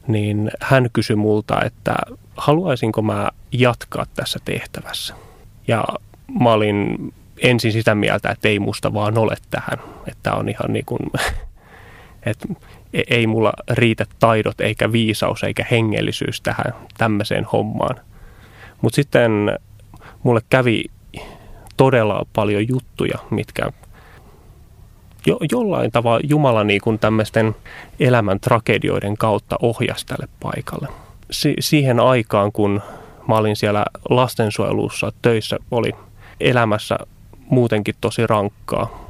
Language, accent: Finnish, native